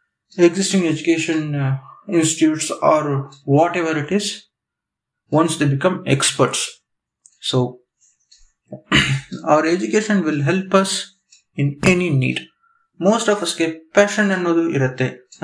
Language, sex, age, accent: Kannada, male, 20-39, native